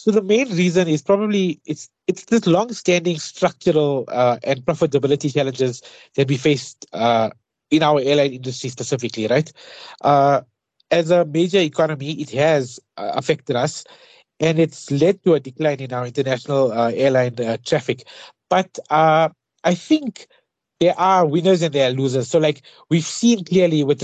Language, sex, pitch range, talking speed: English, male, 130-170 Hz, 160 wpm